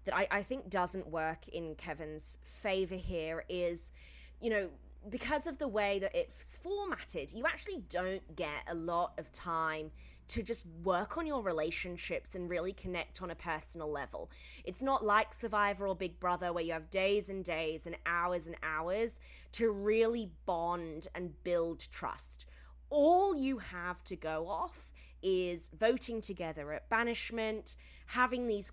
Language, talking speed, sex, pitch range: English, 160 wpm, female, 165-220 Hz